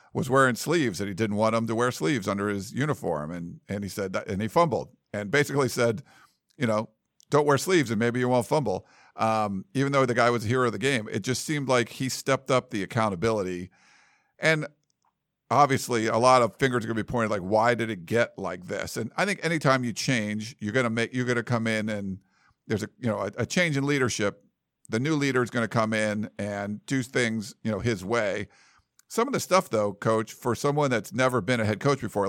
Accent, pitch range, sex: American, 110-135 Hz, male